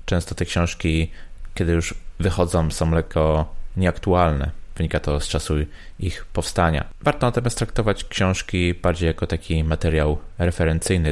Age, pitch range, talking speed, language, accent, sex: 20-39, 80-95 Hz, 130 wpm, Polish, native, male